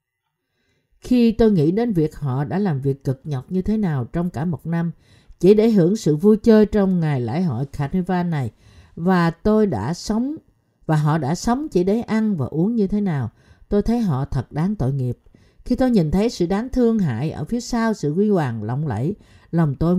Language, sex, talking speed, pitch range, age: Vietnamese, female, 215 wpm, 145-215 Hz, 50-69